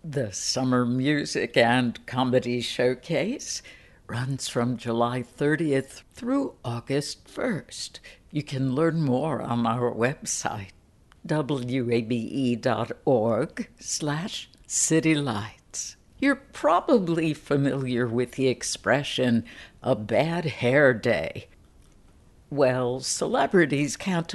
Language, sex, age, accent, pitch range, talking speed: English, female, 60-79, American, 120-150 Hz, 90 wpm